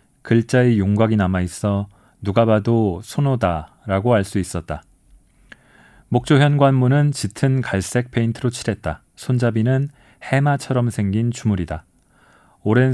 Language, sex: Korean, male